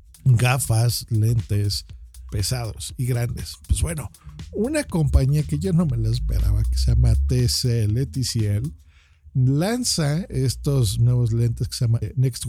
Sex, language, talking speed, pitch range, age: male, Spanish, 130 wpm, 110-150 Hz, 50-69